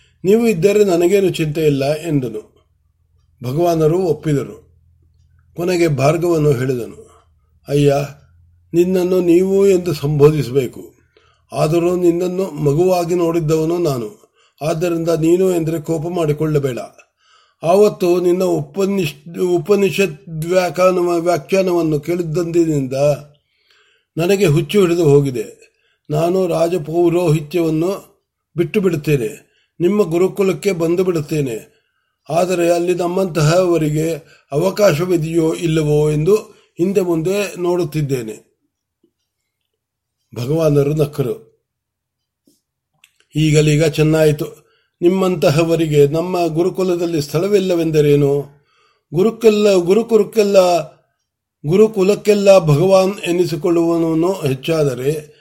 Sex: male